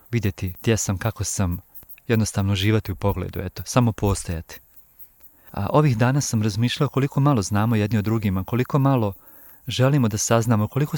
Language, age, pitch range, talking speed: Croatian, 40-59, 105-120 Hz, 155 wpm